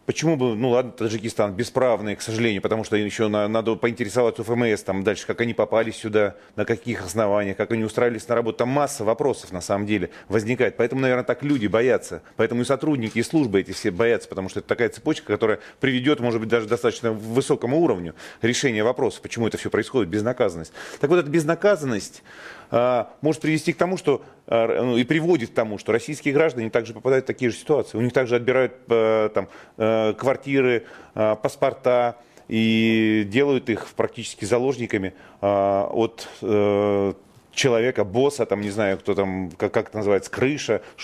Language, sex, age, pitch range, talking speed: Russian, male, 30-49, 100-125 Hz, 175 wpm